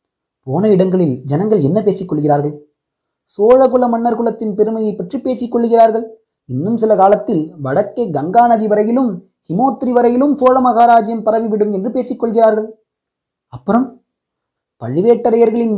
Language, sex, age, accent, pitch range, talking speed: Tamil, male, 30-49, native, 195-235 Hz, 105 wpm